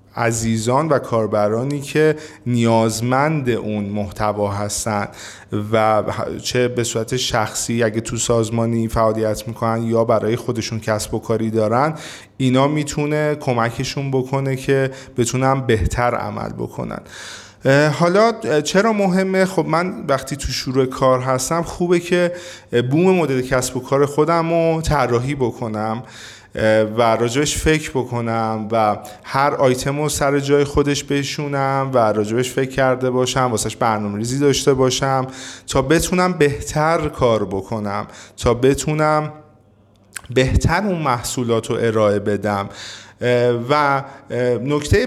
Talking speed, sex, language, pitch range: 120 wpm, male, Persian, 115-150 Hz